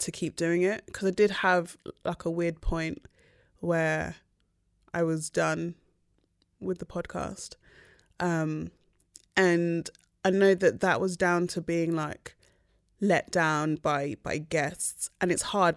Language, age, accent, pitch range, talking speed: English, 20-39, British, 160-185 Hz, 145 wpm